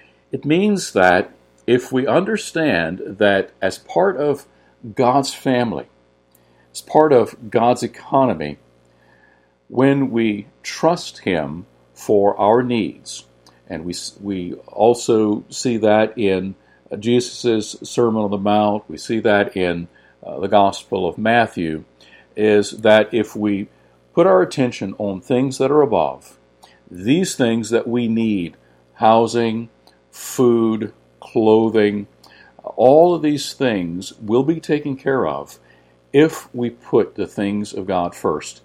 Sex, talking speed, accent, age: male, 125 wpm, American, 50-69